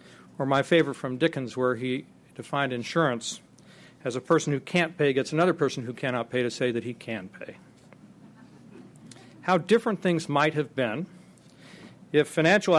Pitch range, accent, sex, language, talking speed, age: 130-160 Hz, American, male, English, 165 wpm, 40-59